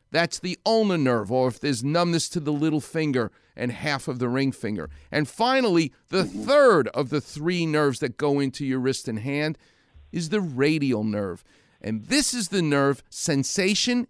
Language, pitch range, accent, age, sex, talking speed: English, 135-190 Hz, American, 40-59, male, 185 wpm